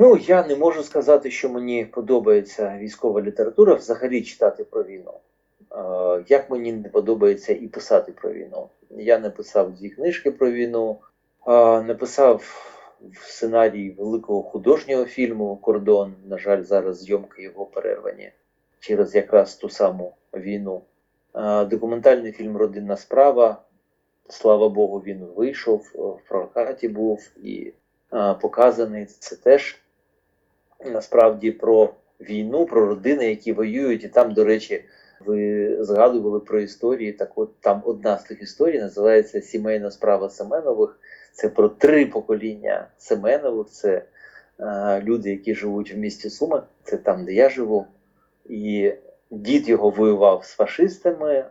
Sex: male